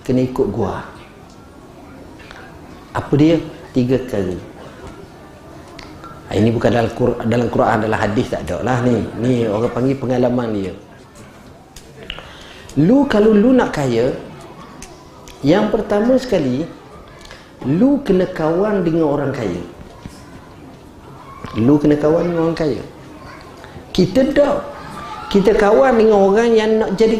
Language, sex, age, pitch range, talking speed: Malay, male, 40-59, 105-165 Hz, 115 wpm